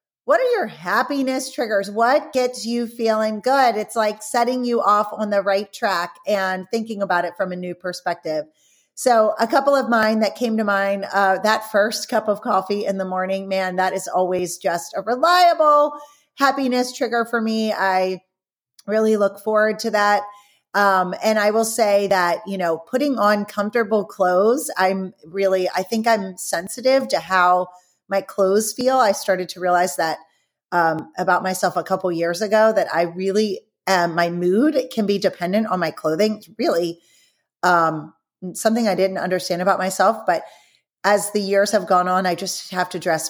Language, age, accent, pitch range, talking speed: English, 30-49, American, 180-225 Hz, 180 wpm